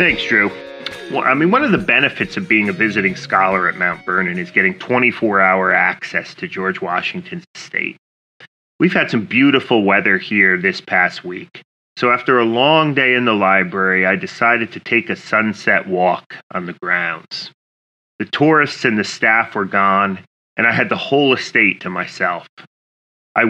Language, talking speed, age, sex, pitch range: English, 170 wpm, 30-49, male, 100-135 Hz